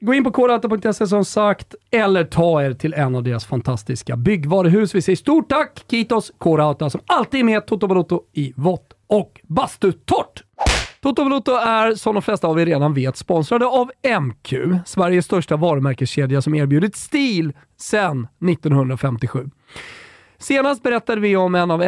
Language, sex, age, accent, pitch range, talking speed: Swedish, male, 40-59, native, 135-210 Hz, 160 wpm